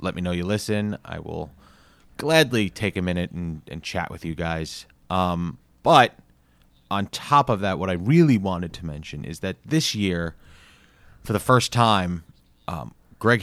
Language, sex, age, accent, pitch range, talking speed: English, male, 30-49, American, 85-110 Hz, 175 wpm